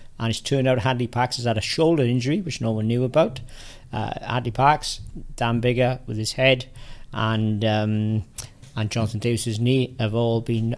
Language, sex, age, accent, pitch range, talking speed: English, male, 40-59, British, 110-125 Hz, 185 wpm